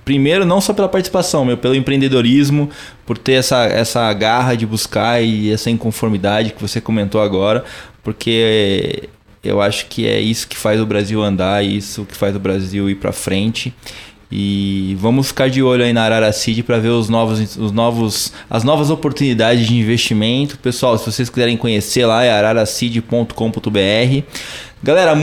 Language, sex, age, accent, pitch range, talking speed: Portuguese, male, 20-39, Brazilian, 110-145 Hz, 150 wpm